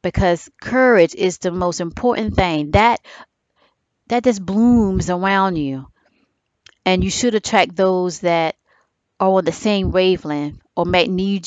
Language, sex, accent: English, female, American